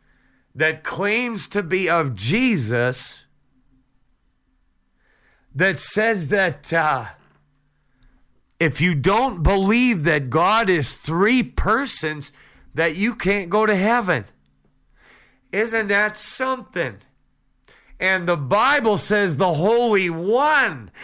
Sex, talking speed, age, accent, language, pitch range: male, 100 wpm, 50-69, American, English, 145-210 Hz